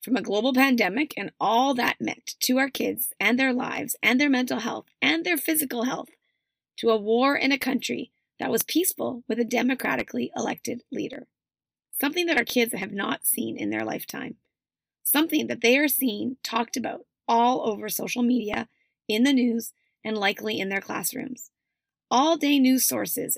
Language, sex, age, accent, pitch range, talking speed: English, female, 30-49, American, 235-295 Hz, 175 wpm